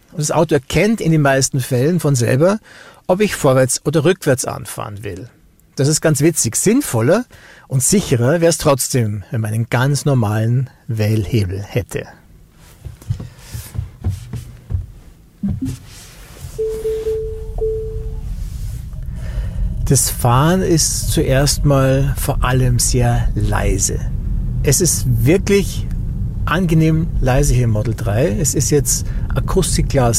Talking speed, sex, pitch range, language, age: 110 wpm, male, 110-145 Hz, German, 60-79